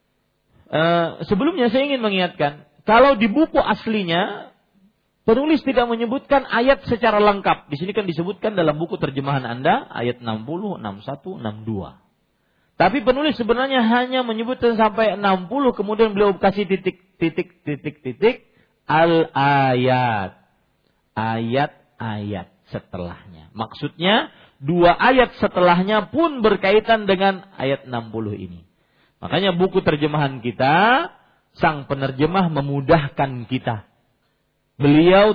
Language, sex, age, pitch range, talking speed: Malay, male, 40-59, 125-210 Hz, 105 wpm